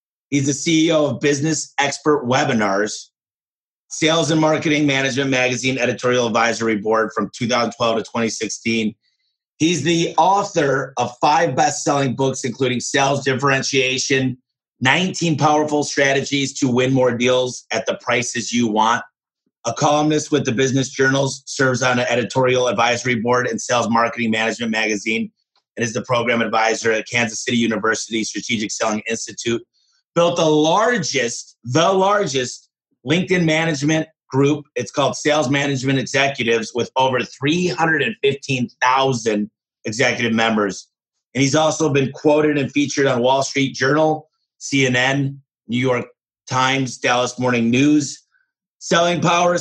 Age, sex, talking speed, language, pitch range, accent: 30-49, male, 130 wpm, English, 120-150 Hz, American